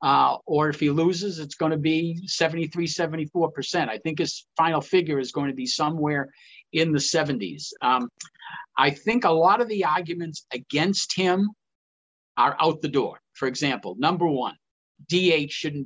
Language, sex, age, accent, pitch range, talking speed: English, male, 50-69, American, 125-165 Hz, 165 wpm